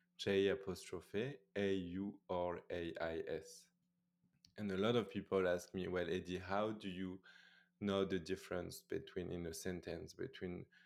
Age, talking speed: 20-39, 125 wpm